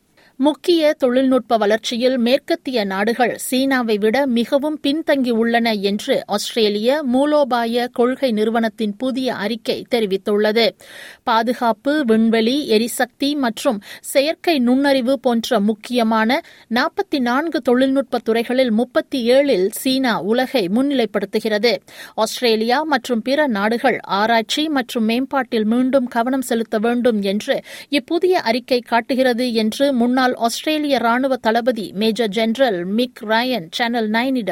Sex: female